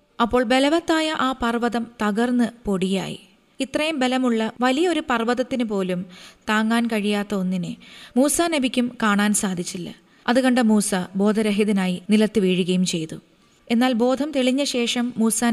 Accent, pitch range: native, 205-255 Hz